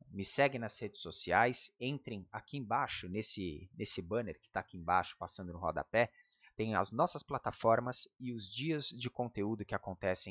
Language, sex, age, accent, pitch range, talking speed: Portuguese, male, 20-39, Brazilian, 95-125 Hz, 170 wpm